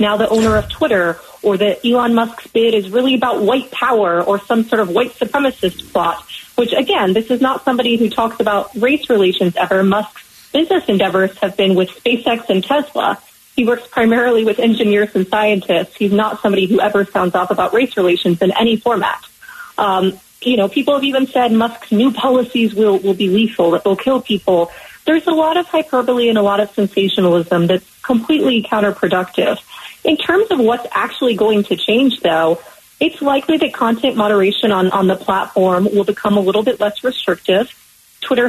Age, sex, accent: 30-49, female, American